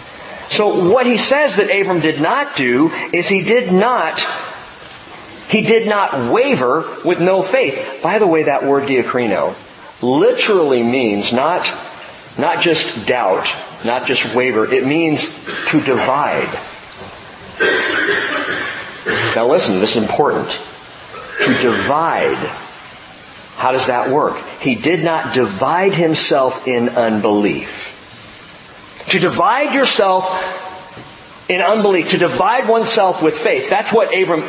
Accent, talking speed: American, 120 wpm